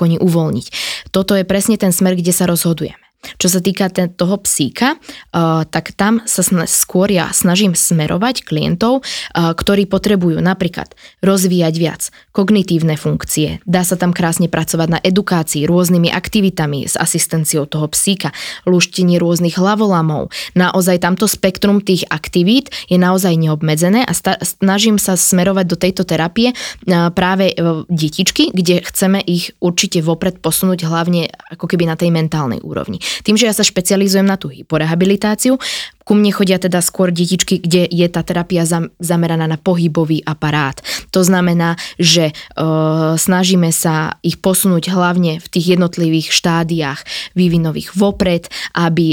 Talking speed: 140 wpm